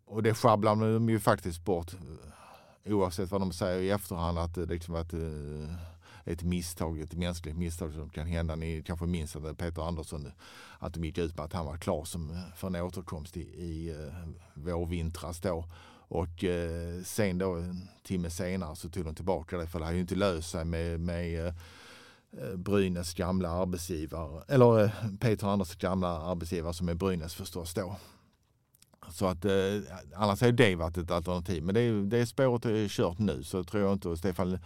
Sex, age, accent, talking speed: male, 50-69, Norwegian, 180 wpm